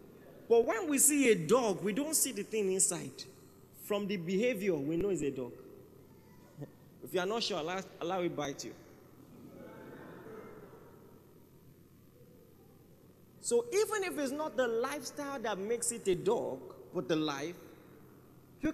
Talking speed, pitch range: 145 wpm, 190-295 Hz